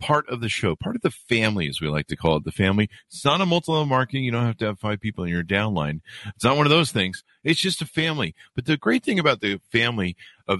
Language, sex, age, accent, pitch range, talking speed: English, male, 50-69, American, 85-130 Hz, 285 wpm